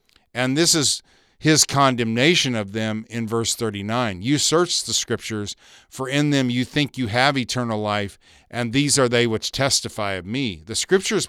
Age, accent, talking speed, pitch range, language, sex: 50-69, American, 175 wpm, 110-130 Hz, English, male